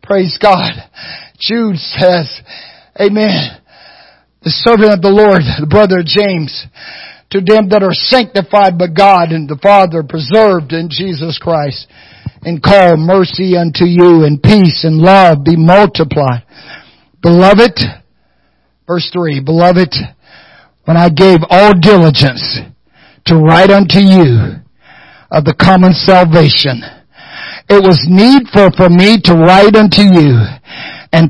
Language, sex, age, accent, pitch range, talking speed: English, male, 60-79, American, 160-190 Hz, 125 wpm